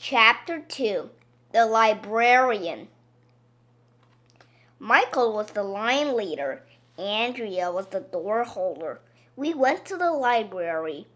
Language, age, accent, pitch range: Chinese, 20-39, American, 205-265 Hz